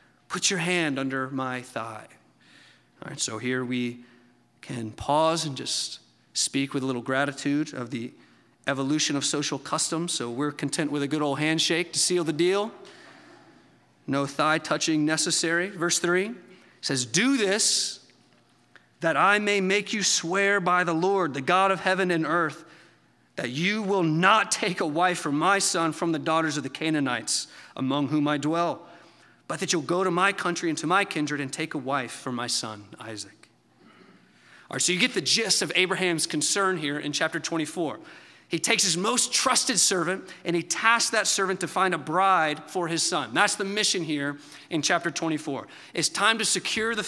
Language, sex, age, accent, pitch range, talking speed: English, male, 40-59, American, 145-190 Hz, 185 wpm